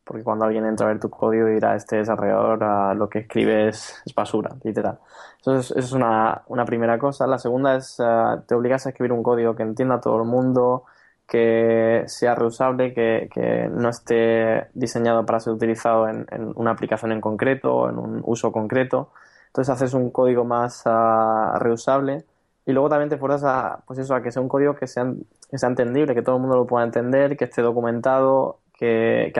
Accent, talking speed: Spanish, 205 wpm